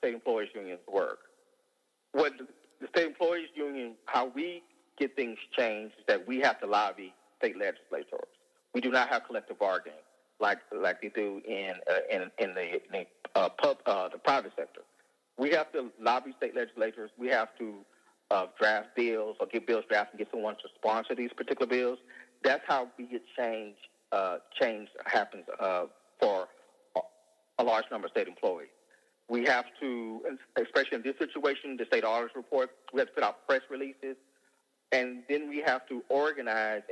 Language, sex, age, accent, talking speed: English, male, 40-59, American, 175 wpm